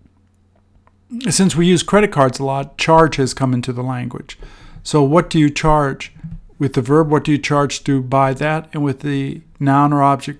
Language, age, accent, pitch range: English, 50-69, American, 110-150 Hz